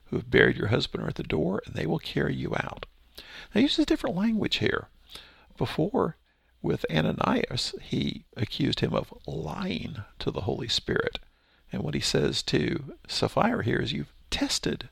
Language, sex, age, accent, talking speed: English, male, 50-69, American, 170 wpm